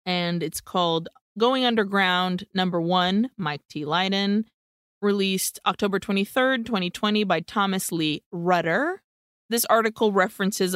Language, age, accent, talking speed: English, 20-39, American, 115 wpm